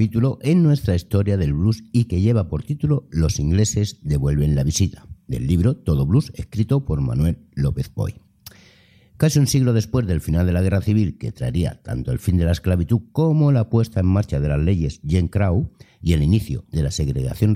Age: 60-79